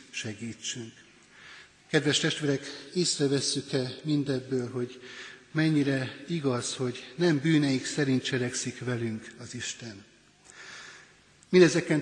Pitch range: 130-150 Hz